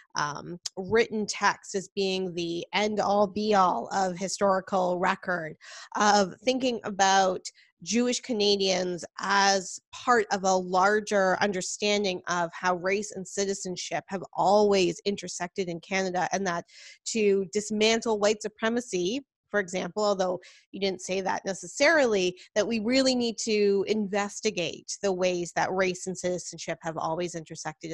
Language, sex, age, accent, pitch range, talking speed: English, female, 20-39, American, 185-225 Hz, 130 wpm